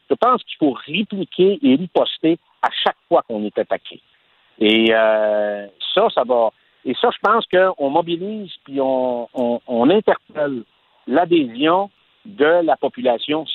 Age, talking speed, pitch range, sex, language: 60-79, 145 wpm, 130-195 Hz, male, French